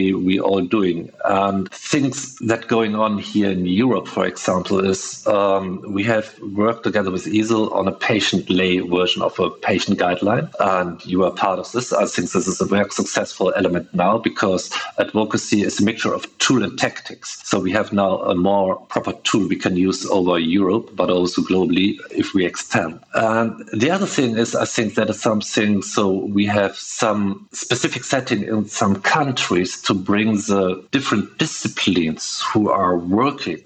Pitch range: 95-105 Hz